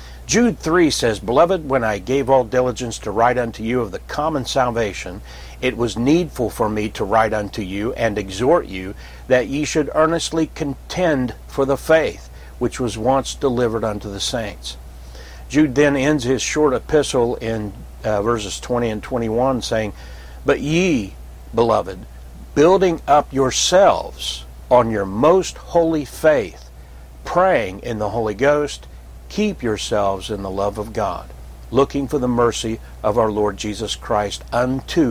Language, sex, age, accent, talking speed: English, male, 60-79, American, 155 wpm